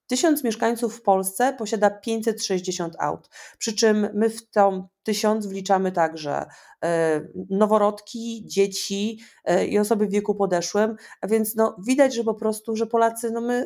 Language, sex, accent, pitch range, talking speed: Polish, female, native, 190-230 Hz, 145 wpm